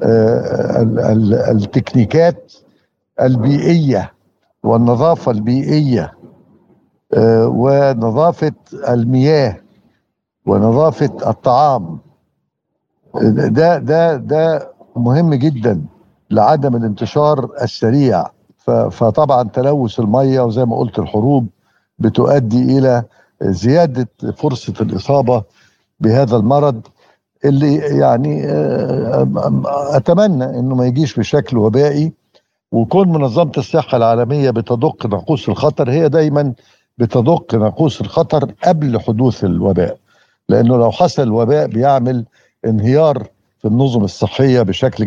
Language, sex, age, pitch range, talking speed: Arabic, male, 60-79, 115-145 Hz, 85 wpm